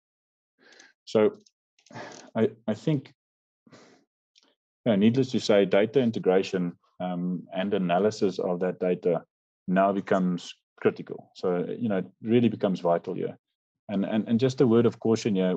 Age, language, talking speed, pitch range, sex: 30-49, English, 145 wpm, 90-110 Hz, male